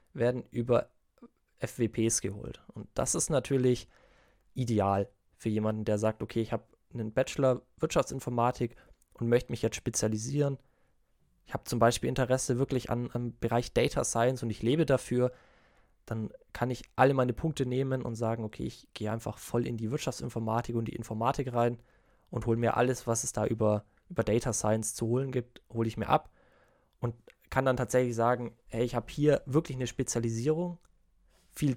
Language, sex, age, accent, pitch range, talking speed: German, male, 20-39, German, 110-125 Hz, 175 wpm